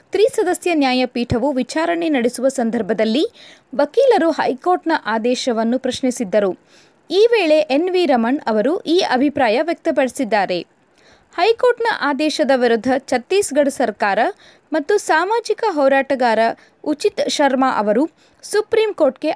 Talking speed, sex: 95 wpm, female